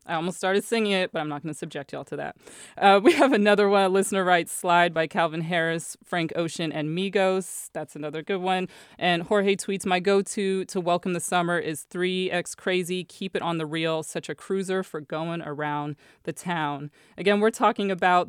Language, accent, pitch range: English, American, 170-195 Hz